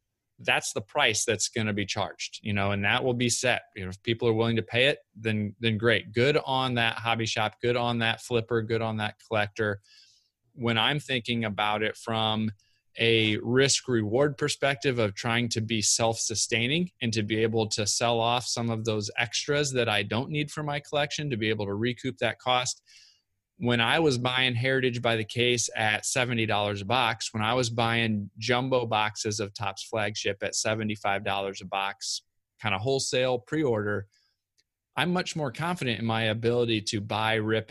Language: English